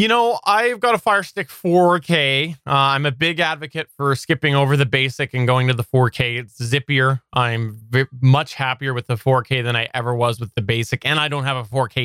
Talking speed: 220 wpm